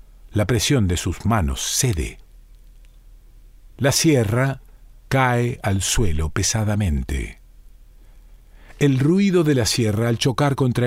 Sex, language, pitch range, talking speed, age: male, Spanish, 100-130 Hz, 110 wpm, 50-69